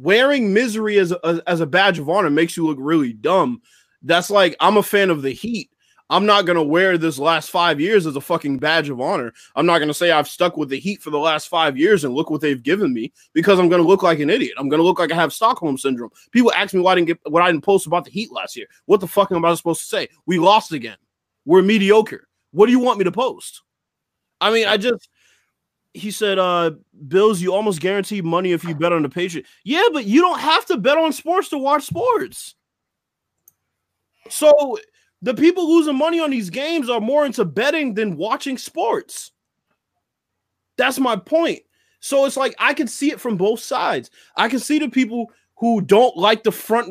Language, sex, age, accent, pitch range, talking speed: English, male, 20-39, American, 170-245 Hz, 220 wpm